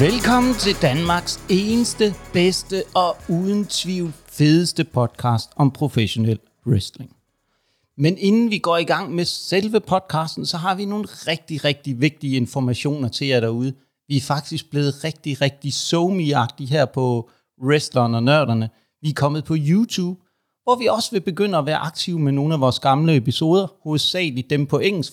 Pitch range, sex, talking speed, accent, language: 130-175 Hz, male, 160 wpm, native, Danish